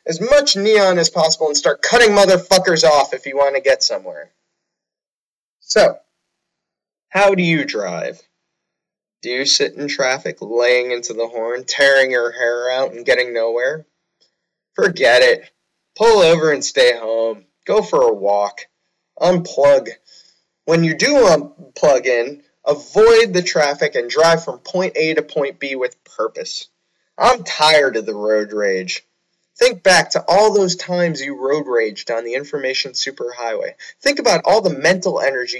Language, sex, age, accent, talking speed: English, male, 20-39, American, 155 wpm